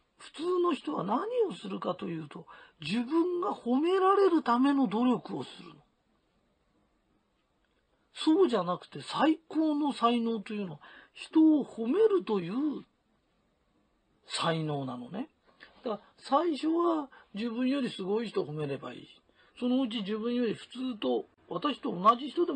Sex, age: male, 40-59